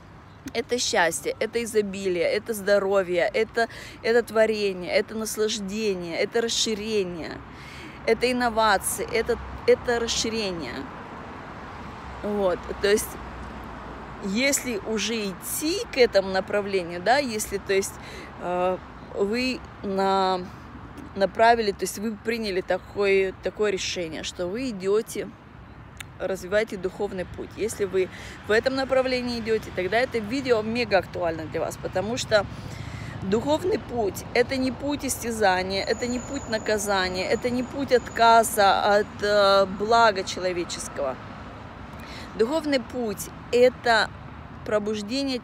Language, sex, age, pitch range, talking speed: Russian, female, 20-39, 185-245 Hz, 110 wpm